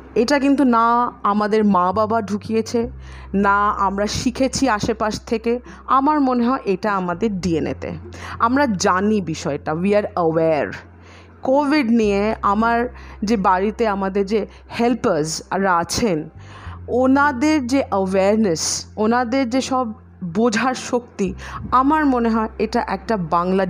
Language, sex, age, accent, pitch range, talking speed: Bengali, female, 40-59, native, 185-235 Hz, 90 wpm